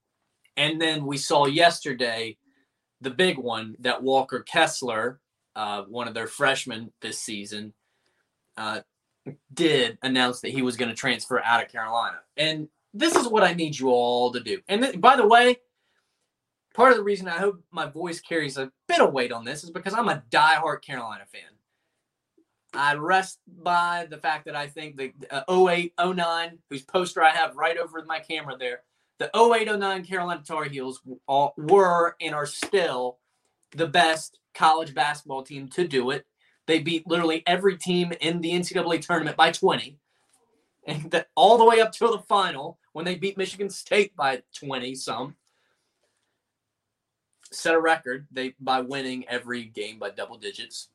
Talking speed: 170 wpm